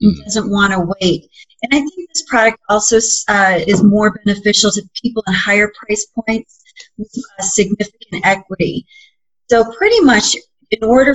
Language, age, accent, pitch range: English, 30-49, American, 195-230 Hz